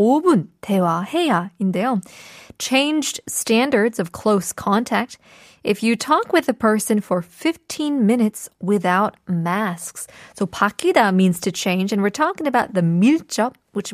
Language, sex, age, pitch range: Korean, female, 20-39, 190-250 Hz